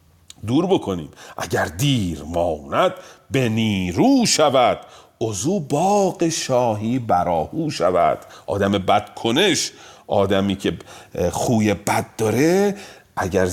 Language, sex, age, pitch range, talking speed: Persian, male, 40-59, 105-150 Hz, 95 wpm